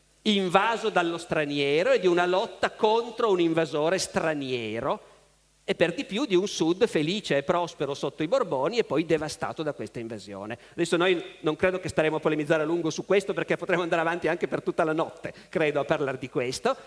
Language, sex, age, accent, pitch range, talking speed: Italian, male, 50-69, native, 160-220 Hz, 200 wpm